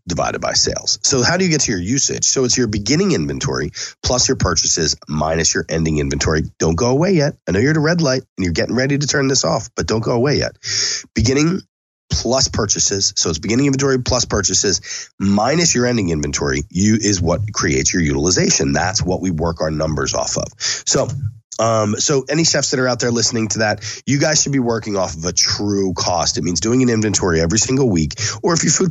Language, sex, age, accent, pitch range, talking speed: English, male, 30-49, American, 95-130 Hz, 220 wpm